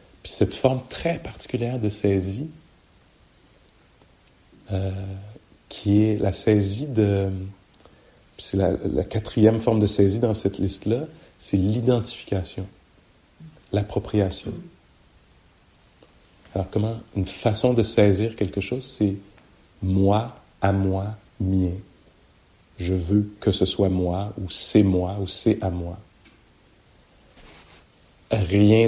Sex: male